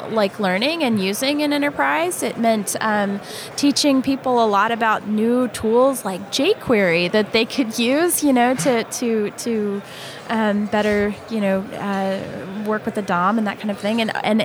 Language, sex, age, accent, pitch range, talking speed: English, female, 10-29, American, 195-230 Hz, 180 wpm